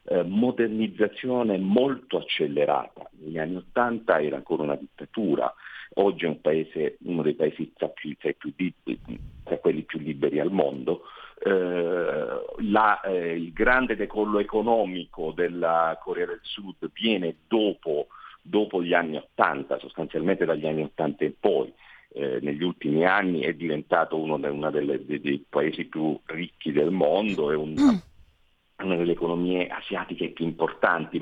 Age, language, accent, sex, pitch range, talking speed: 50-69, Italian, native, male, 80-115 Hz, 140 wpm